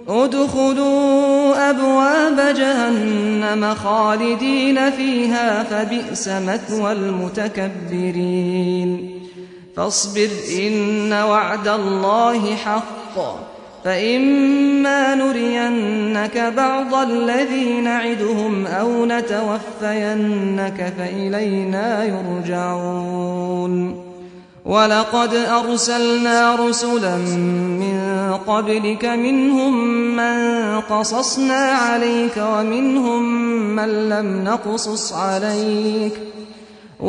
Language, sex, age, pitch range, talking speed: English, male, 30-49, 195-235 Hz, 60 wpm